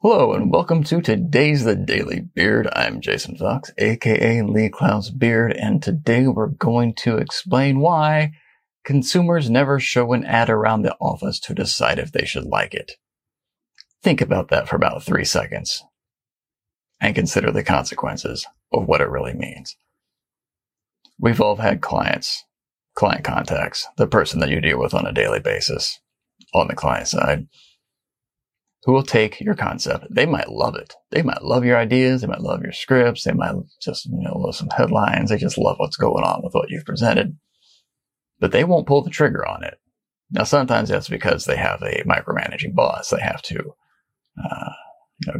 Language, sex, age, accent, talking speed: English, male, 40-59, American, 175 wpm